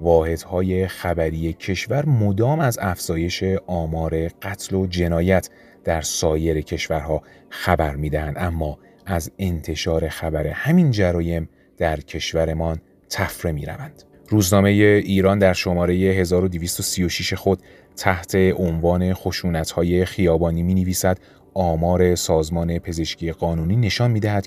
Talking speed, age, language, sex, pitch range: 105 wpm, 30-49, Persian, male, 80-95 Hz